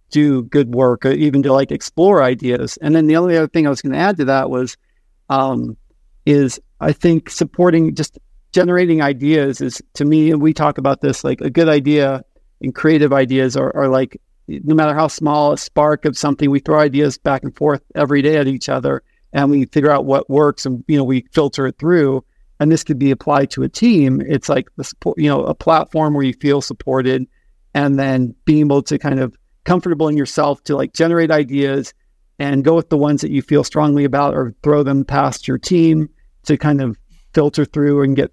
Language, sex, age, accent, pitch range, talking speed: English, male, 50-69, American, 135-155 Hz, 215 wpm